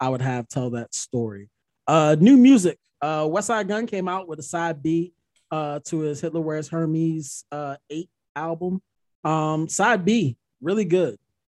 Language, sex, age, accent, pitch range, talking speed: English, male, 20-39, American, 130-160 Hz, 170 wpm